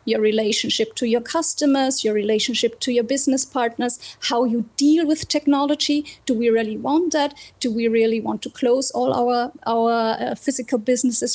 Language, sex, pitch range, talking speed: English, female, 230-275 Hz, 175 wpm